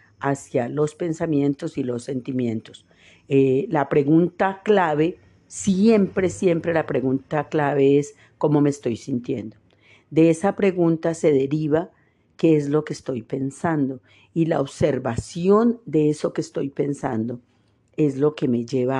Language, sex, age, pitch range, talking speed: Spanish, female, 50-69, 120-155 Hz, 140 wpm